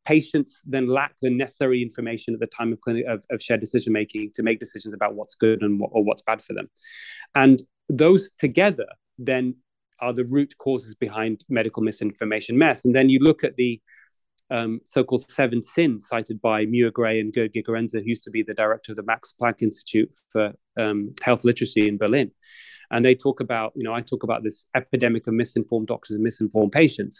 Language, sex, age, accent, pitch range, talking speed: English, male, 30-49, British, 110-130 Hz, 205 wpm